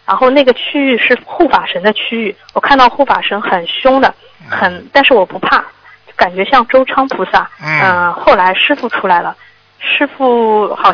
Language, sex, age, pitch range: Chinese, female, 20-39, 190-240 Hz